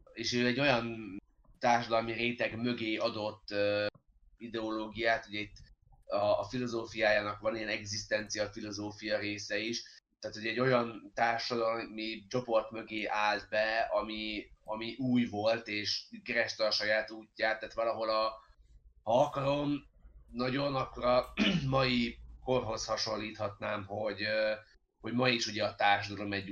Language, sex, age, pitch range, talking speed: Hungarian, male, 30-49, 105-120 Hz, 125 wpm